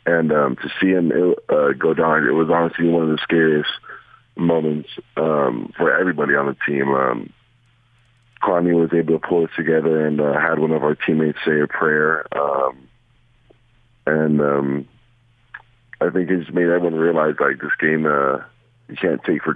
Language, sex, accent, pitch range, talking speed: English, male, American, 75-120 Hz, 180 wpm